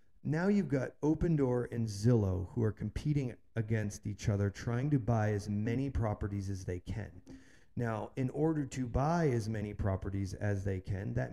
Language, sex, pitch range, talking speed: English, male, 100-130 Hz, 175 wpm